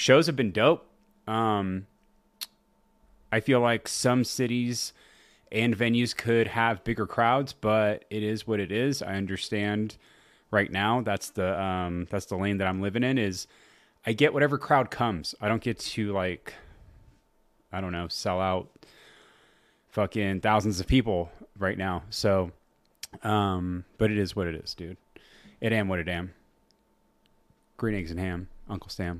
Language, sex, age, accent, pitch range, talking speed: English, male, 30-49, American, 95-115 Hz, 160 wpm